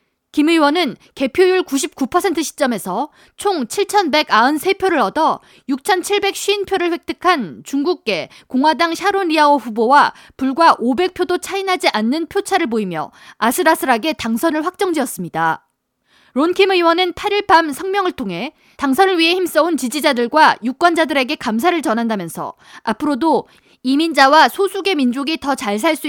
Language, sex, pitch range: Korean, female, 265-360 Hz